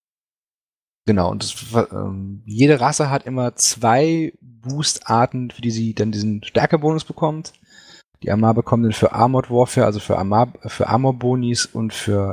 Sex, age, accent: male, 30-49, German